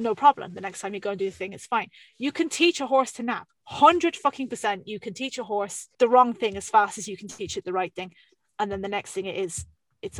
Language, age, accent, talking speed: English, 20-39, British, 290 wpm